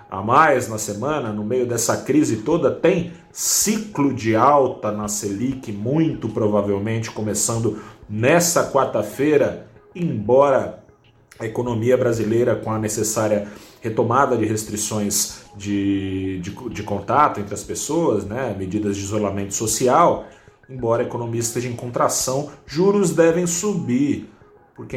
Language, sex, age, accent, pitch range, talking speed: Portuguese, male, 30-49, Brazilian, 105-130 Hz, 125 wpm